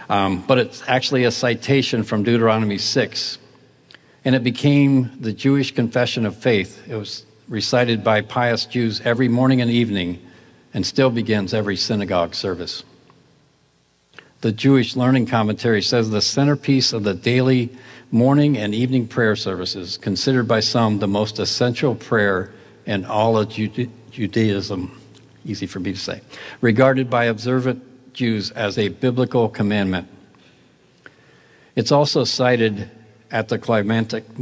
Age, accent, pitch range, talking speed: 60-79, American, 100-125 Hz, 135 wpm